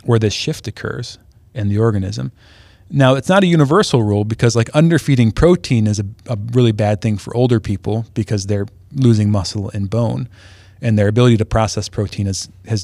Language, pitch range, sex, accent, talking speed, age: English, 100-130 Hz, male, American, 185 wpm, 30-49